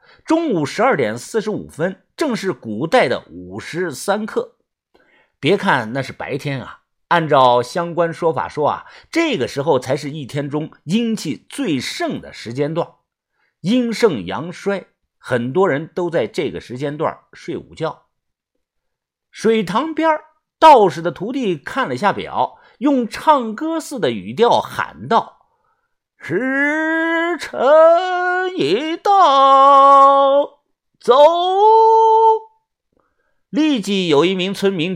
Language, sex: Chinese, male